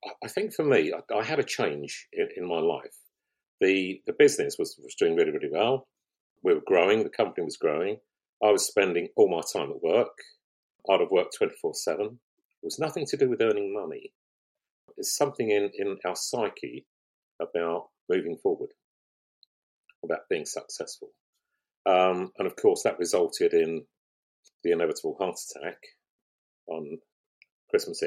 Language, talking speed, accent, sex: English, 165 wpm, British, male